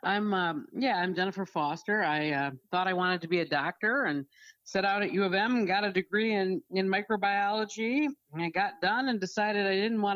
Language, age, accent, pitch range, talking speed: English, 50-69, American, 165-210 Hz, 225 wpm